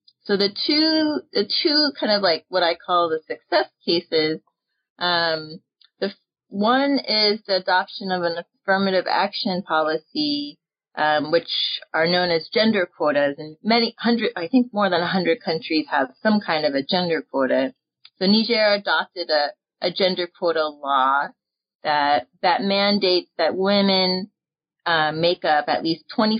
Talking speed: 155 wpm